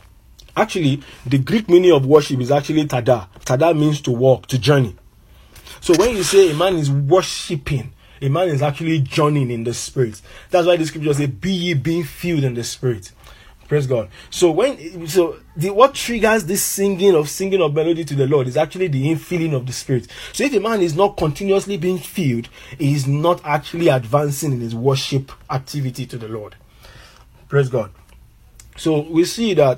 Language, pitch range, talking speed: English, 130-170 Hz, 190 wpm